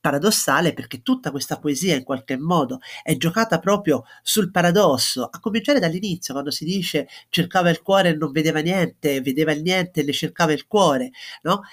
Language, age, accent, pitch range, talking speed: Italian, 40-59, native, 150-215 Hz, 180 wpm